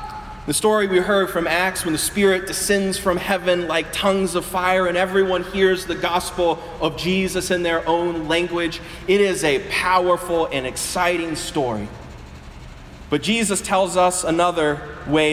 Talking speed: 155 wpm